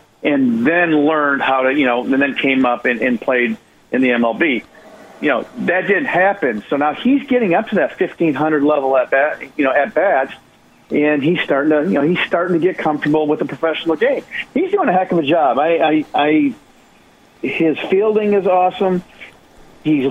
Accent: American